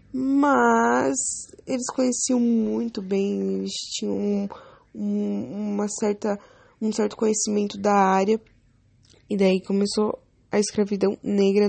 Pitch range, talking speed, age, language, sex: 205-230 Hz, 100 wpm, 10-29, English, female